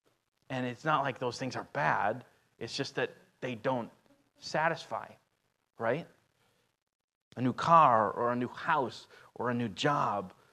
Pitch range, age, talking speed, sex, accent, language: 105-125 Hz, 30-49, 150 wpm, male, American, English